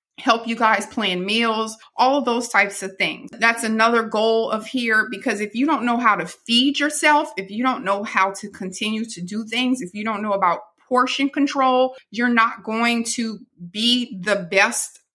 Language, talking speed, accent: English, 195 wpm, American